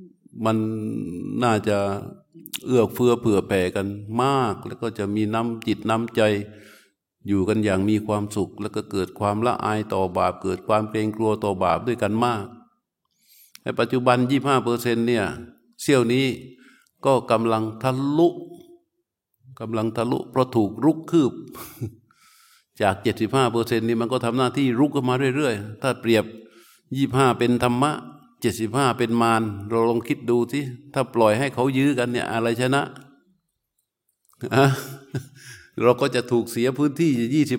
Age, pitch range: 60-79, 110-135 Hz